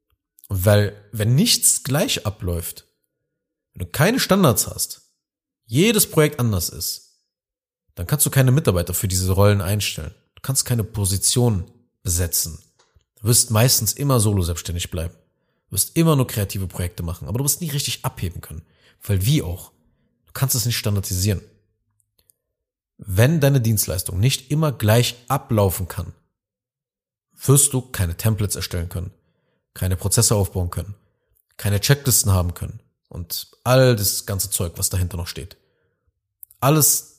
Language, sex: German, male